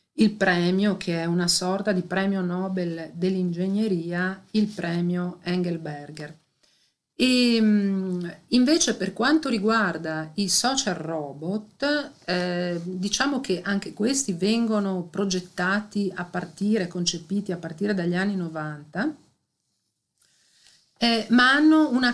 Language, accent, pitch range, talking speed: Italian, native, 175-215 Hz, 105 wpm